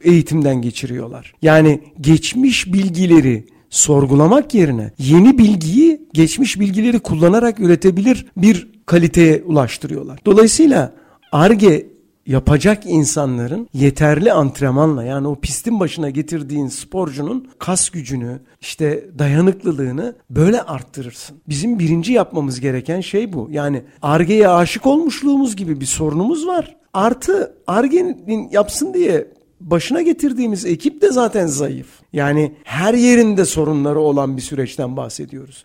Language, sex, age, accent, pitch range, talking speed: Turkish, male, 60-79, native, 145-220 Hz, 110 wpm